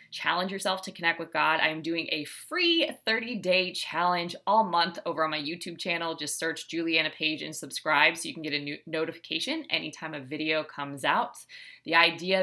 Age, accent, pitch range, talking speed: 20-39, American, 155-200 Hz, 190 wpm